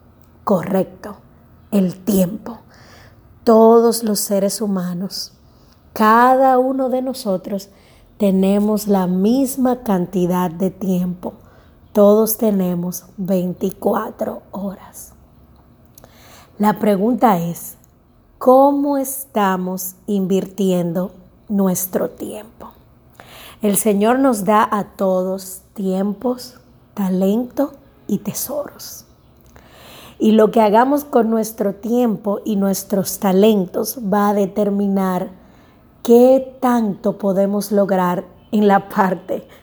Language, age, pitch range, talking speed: Spanish, 20-39, 190-235 Hz, 90 wpm